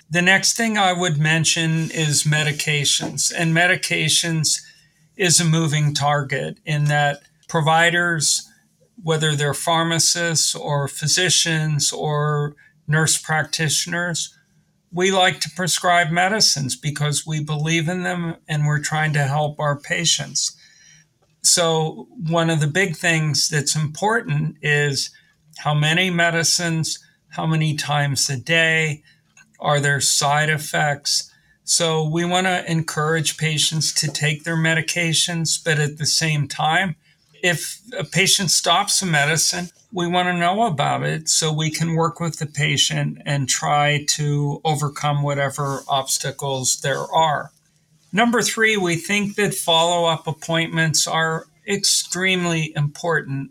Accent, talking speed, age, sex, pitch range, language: American, 130 wpm, 50-69, male, 150-170 Hz, English